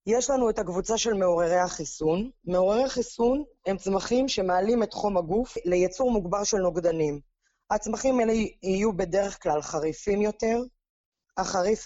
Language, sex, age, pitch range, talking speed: Hebrew, female, 20-39, 175-225 Hz, 135 wpm